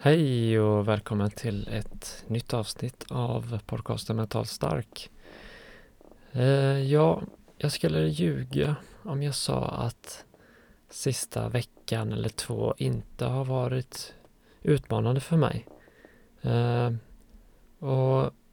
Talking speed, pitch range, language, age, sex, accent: 95 wpm, 105-130 Hz, Swedish, 30-49, male, native